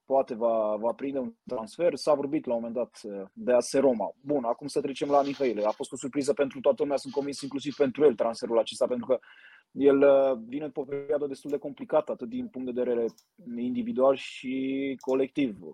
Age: 20-39